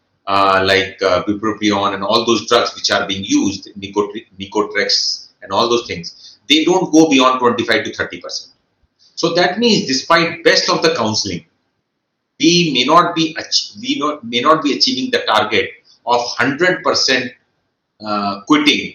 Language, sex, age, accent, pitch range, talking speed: English, male, 40-59, Indian, 115-170 Hz, 165 wpm